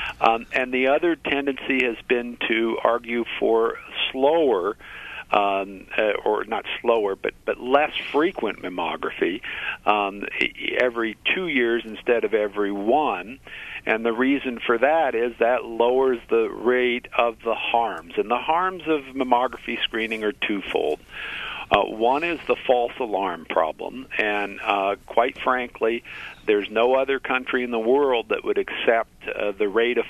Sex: male